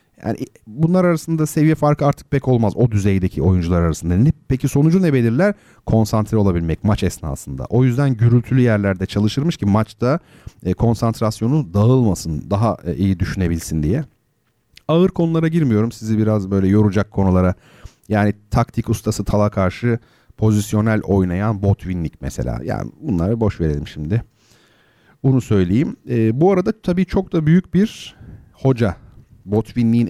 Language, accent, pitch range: Turkish, native, 100-135 Hz